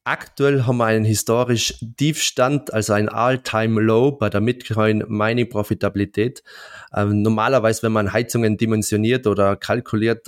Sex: male